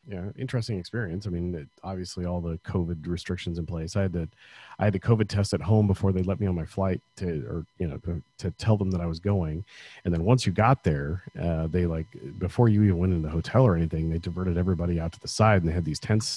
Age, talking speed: 40-59, 265 wpm